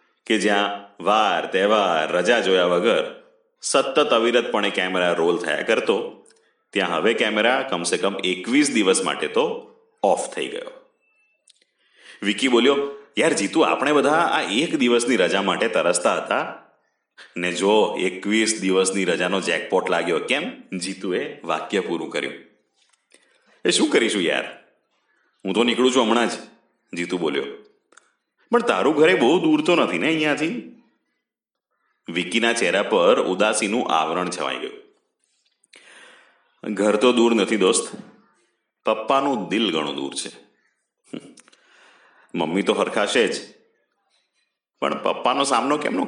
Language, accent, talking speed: Gujarati, native, 115 wpm